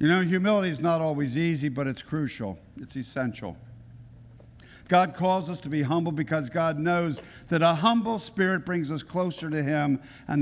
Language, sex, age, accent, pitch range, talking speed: English, male, 50-69, American, 115-155 Hz, 180 wpm